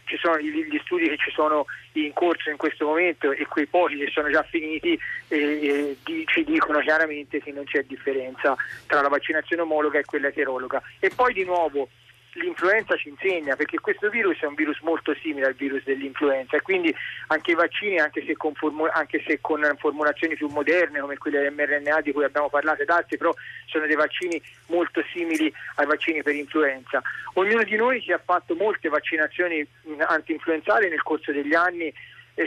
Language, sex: Italian, male